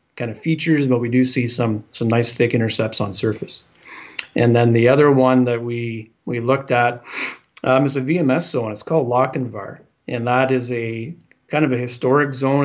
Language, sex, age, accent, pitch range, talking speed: English, male, 40-59, American, 120-135 Hz, 195 wpm